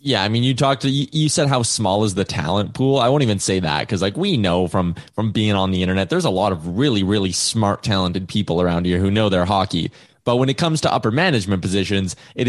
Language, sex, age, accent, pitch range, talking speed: English, male, 20-39, American, 105-140 Hz, 255 wpm